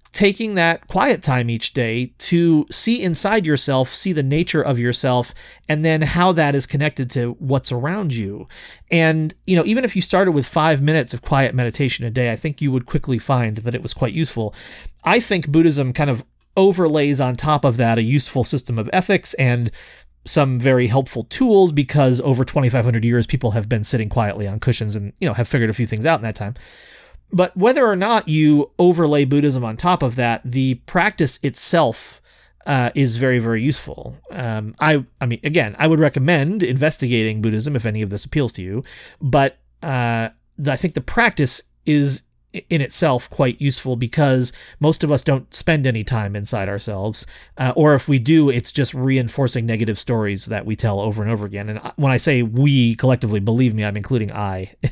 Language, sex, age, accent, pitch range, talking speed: English, male, 30-49, American, 115-155 Hz, 195 wpm